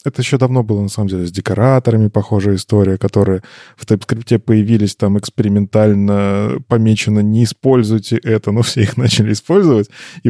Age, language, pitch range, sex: 20-39, Russian, 105-125 Hz, male